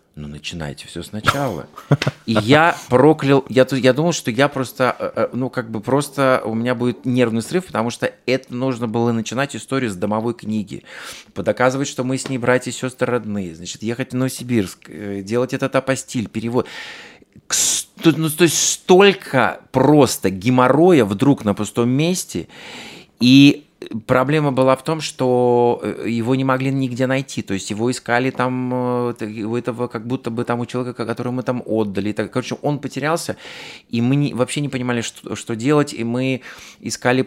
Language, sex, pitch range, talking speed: Russian, male, 105-130 Hz, 165 wpm